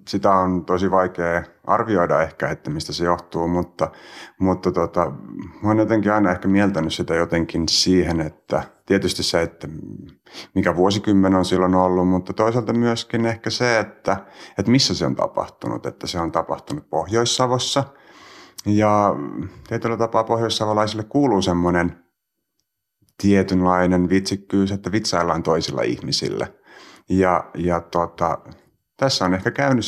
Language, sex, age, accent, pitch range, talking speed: Finnish, male, 30-49, native, 90-110 Hz, 130 wpm